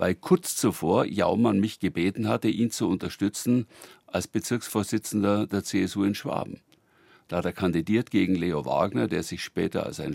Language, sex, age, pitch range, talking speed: German, male, 60-79, 90-110 Hz, 165 wpm